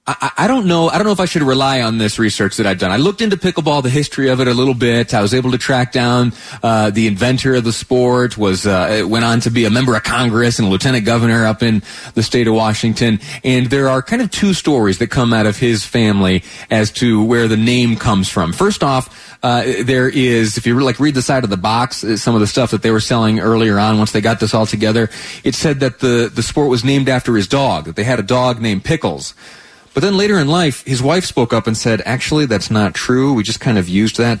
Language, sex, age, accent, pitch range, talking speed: English, male, 30-49, American, 105-130 Hz, 260 wpm